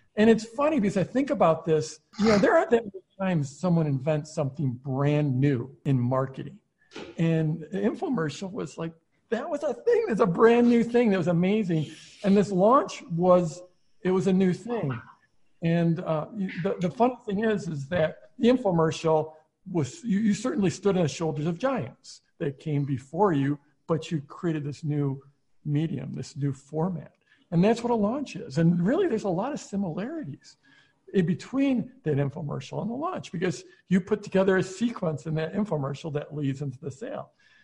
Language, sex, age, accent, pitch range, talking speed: English, male, 50-69, American, 150-200 Hz, 185 wpm